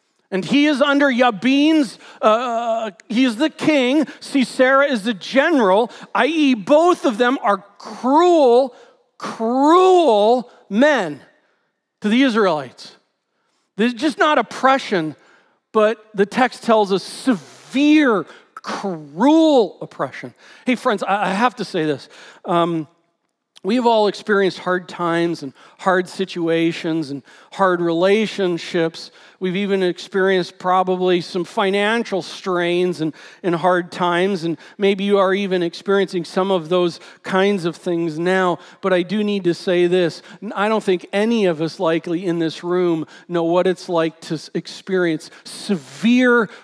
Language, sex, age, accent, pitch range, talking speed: English, male, 40-59, American, 175-235 Hz, 135 wpm